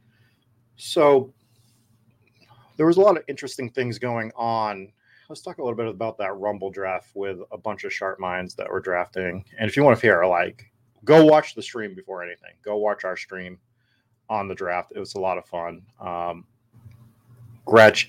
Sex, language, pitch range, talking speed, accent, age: male, English, 95-120 Hz, 185 wpm, American, 30-49